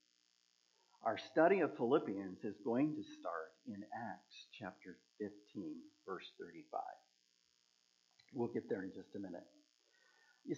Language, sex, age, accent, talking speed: English, male, 50-69, American, 125 wpm